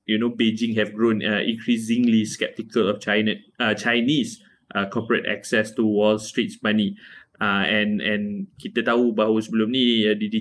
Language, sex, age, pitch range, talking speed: Malay, male, 20-39, 105-115 Hz, 165 wpm